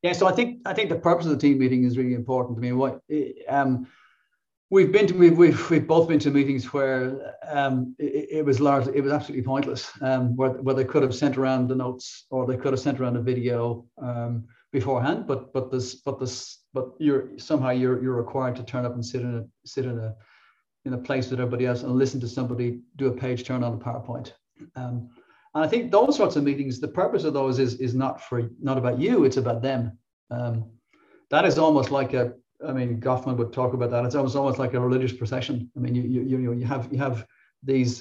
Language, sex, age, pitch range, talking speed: English, male, 40-59, 125-140 Hz, 240 wpm